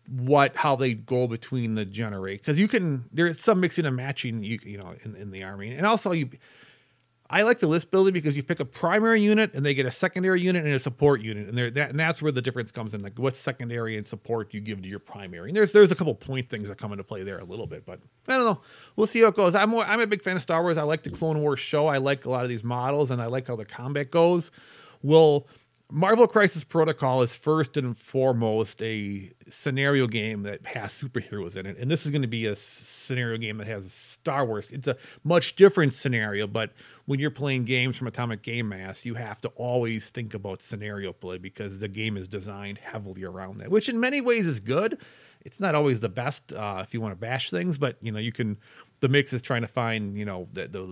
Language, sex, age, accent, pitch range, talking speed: English, male, 40-59, American, 110-150 Hz, 245 wpm